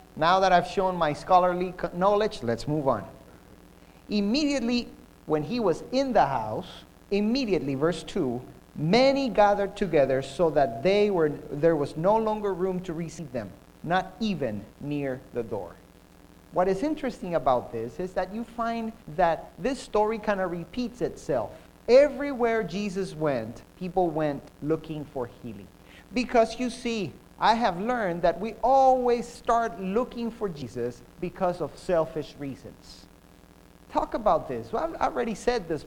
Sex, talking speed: male, 150 wpm